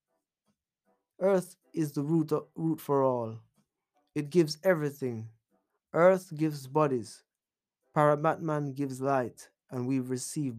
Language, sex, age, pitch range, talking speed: English, male, 20-39, 135-165 Hz, 100 wpm